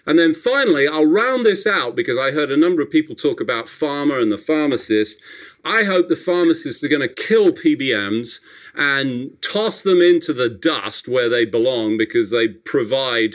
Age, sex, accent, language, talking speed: 40-59, male, British, English, 185 wpm